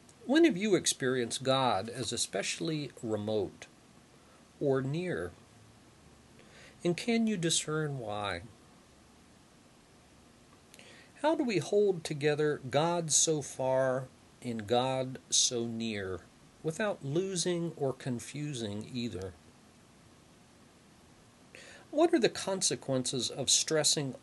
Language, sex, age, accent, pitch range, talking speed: English, male, 40-59, American, 120-170 Hz, 95 wpm